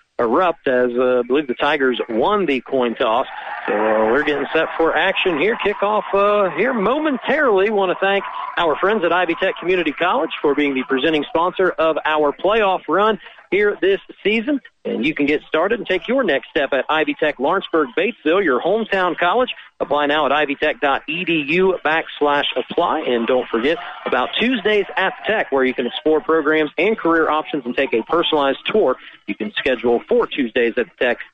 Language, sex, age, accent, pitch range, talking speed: English, male, 40-59, American, 155-205 Hz, 185 wpm